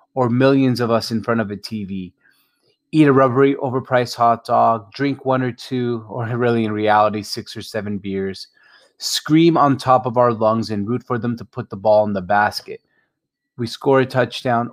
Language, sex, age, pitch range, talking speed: English, male, 30-49, 110-135 Hz, 195 wpm